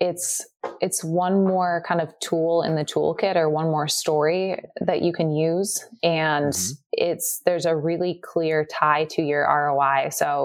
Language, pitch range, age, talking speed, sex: English, 150-165 Hz, 20-39, 165 wpm, female